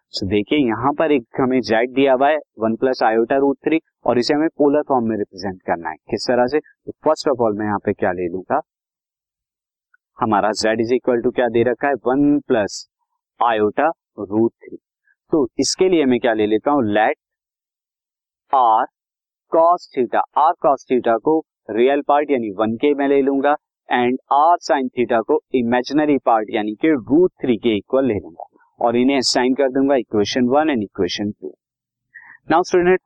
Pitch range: 115-160 Hz